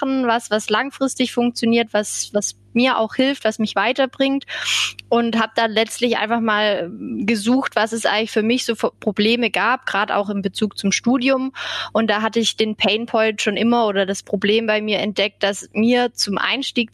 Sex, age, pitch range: female, 20-39, 205-235 Hz